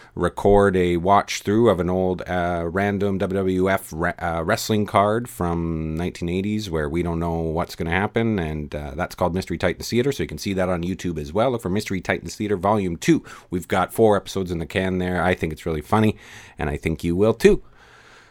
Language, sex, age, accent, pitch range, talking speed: English, male, 30-49, American, 85-105 Hz, 215 wpm